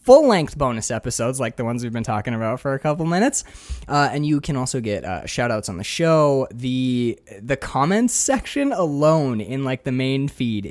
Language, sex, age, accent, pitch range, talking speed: English, male, 20-39, American, 115-155 Hz, 195 wpm